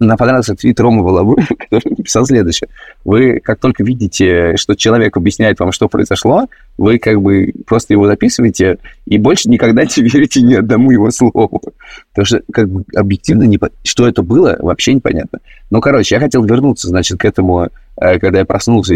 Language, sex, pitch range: Russian, male, 100-140 Hz